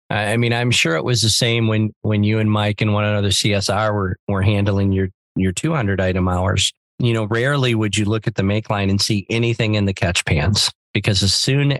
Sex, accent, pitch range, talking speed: male, American, 100-115 Hz, 230 wpm